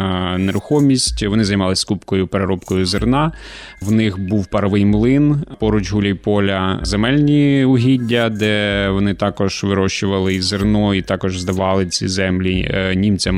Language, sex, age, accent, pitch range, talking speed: Ukrainian, male, 20-39, native, 100-115 Hz, 120 wpm